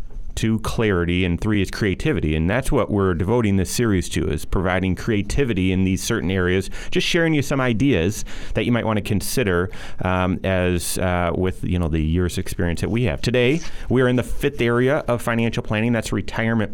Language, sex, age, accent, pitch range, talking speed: English, male, 30-49, American, 95-135 Hz, 195 wpm